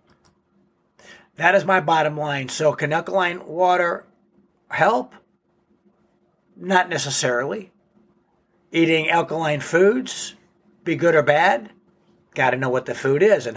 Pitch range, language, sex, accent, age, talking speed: 140-175 Hz, English, male, American, 60-79, 120 wpm